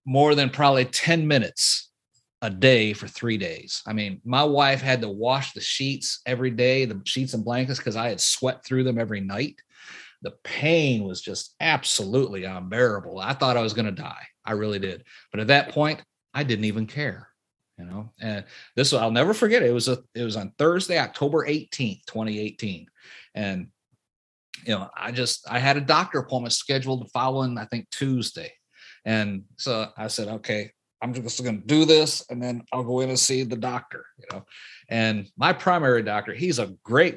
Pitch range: 110-140 Hz